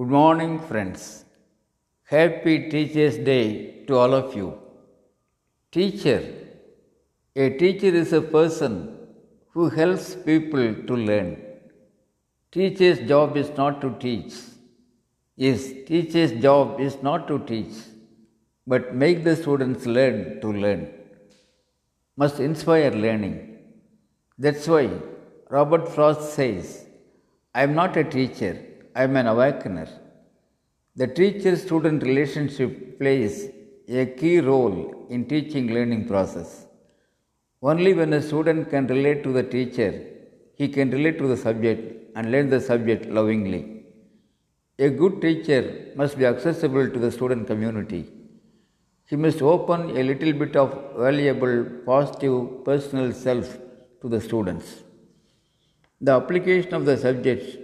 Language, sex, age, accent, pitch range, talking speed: Tamil, male, 60-79, native, 120-155 Hz, 125 wpm